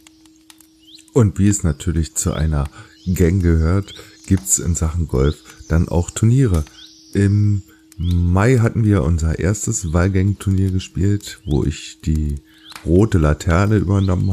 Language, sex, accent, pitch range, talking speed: German, male, German, 80-105 Hz, 125 wpm